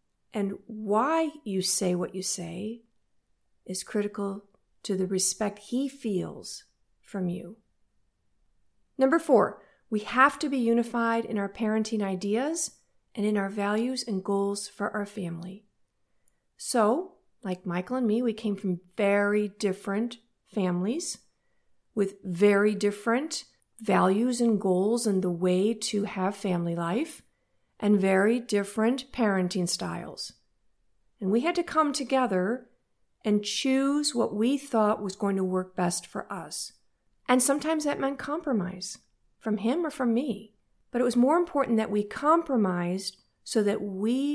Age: 40-59